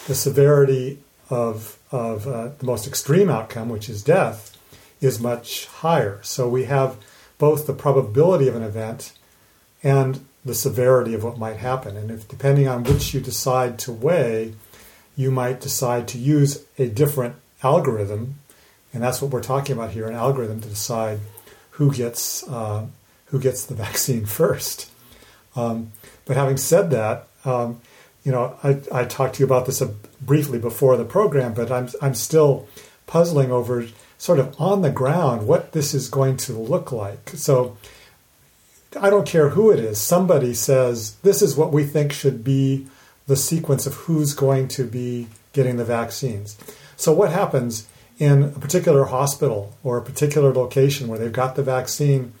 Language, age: English, 40-59